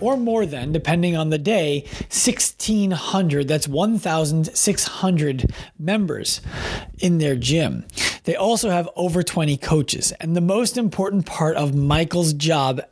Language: English